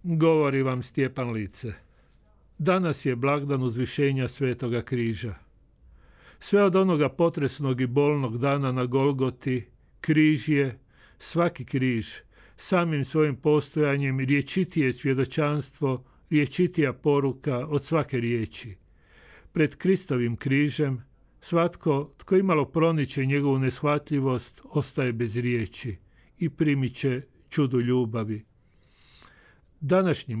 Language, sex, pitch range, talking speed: Croatian, male, 125-150 Hz, 100 wpm